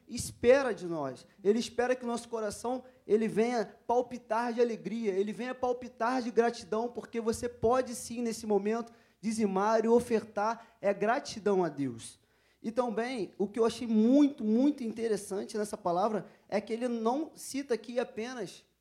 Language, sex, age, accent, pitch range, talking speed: Portuguese, male, 20-39, Brazilian, 205-245 Hz, 160 wpm